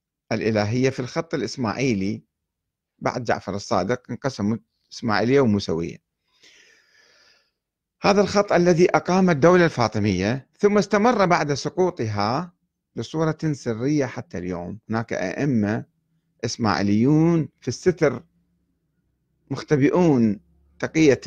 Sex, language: male, Arabic